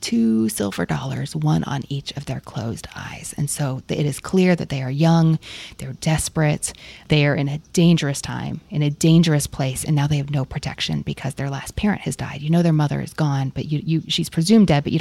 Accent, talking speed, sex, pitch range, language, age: American, 230 wpm, female, 140-170 Hz, English, 30-49